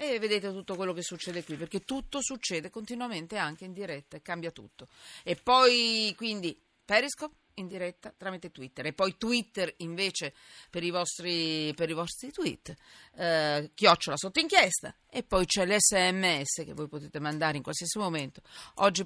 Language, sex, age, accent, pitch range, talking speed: Italian, female, 40-59, native, 155-215 Hz, 160 wpm